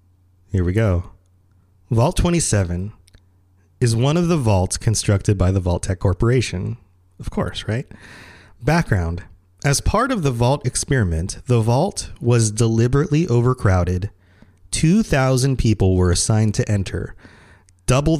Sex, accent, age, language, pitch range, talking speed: male, American, 30-49, English, 95-130 Hz, 125 wpm